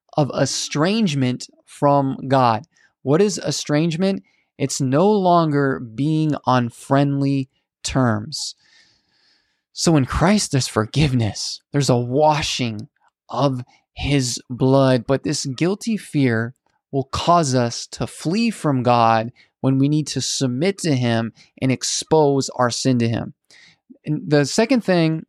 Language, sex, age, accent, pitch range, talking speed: English, male, 20-39, American, 130-165 Hz, 125 wpm